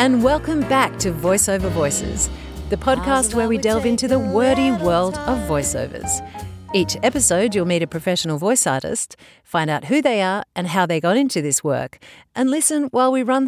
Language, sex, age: English, female, 50-69